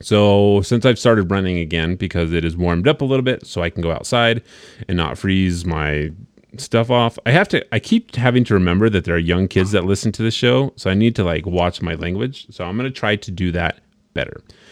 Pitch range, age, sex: 90-110 Hz, 30-49, male